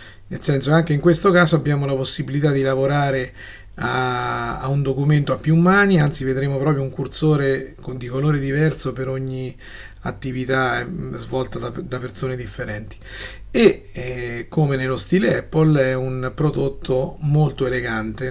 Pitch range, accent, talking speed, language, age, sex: 115-145 Hz, native, 155 wpm, Italian, 30-49, male